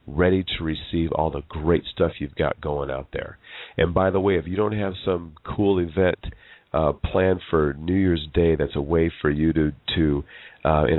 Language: English